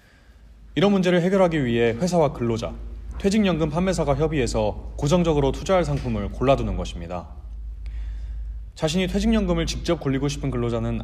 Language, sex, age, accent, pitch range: Korean, male, 30-49, native, 100-155 Hz